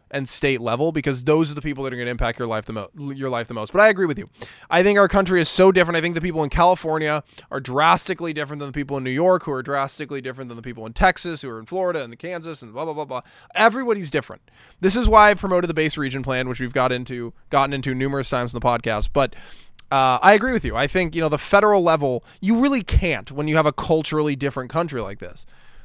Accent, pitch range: American, 130-180 Hz